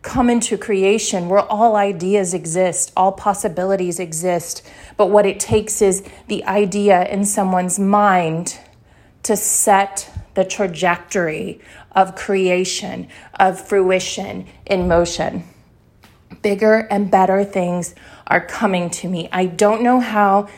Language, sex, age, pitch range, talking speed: English, female, 30-49, 195-250 Hz, 120 wpm